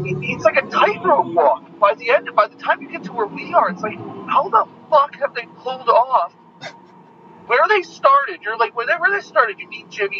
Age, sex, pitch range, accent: 40-59, male, 175-265 Hz, American